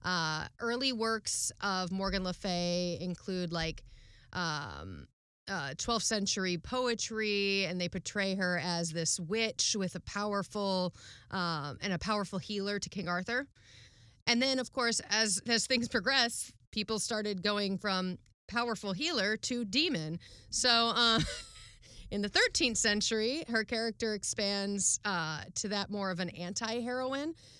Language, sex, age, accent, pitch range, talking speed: English, female, 30-49, American, 175-220 Hz, 140 wpm